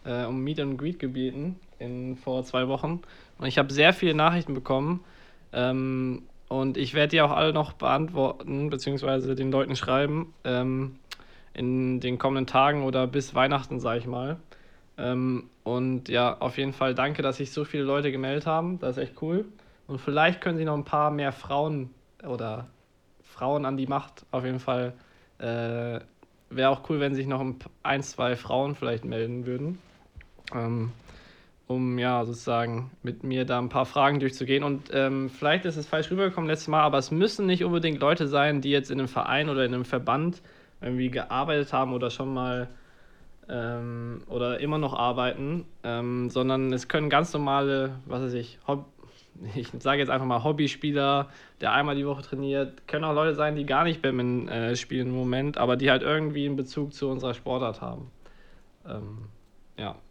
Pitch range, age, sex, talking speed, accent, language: 125-145 Hz, 20-39, male, 175 wpm, German, German